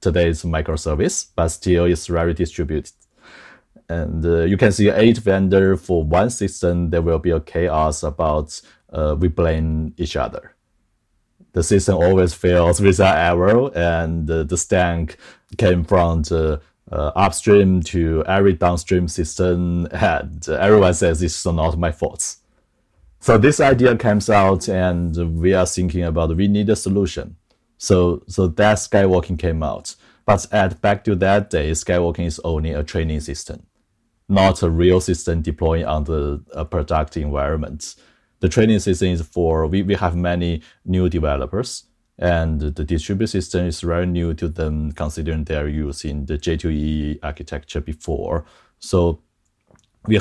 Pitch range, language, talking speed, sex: 80-95 Hz, English, 150 wpm, male